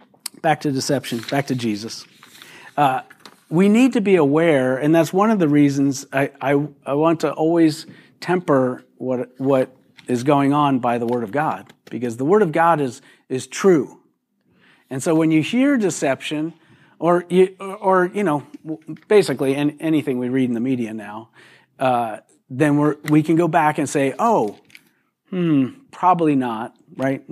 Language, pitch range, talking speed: English, 135-180 Hz, 170 wpm